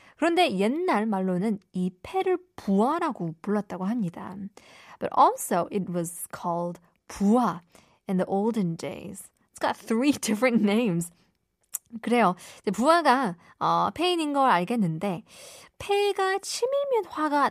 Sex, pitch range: female, 185-295 Hz